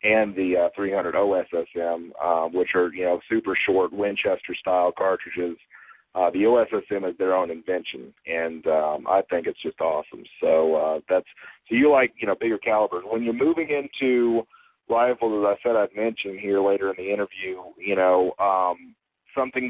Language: English